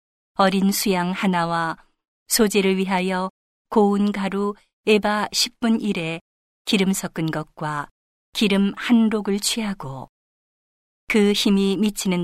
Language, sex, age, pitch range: Korean, female, 40-59, 170-210 Hz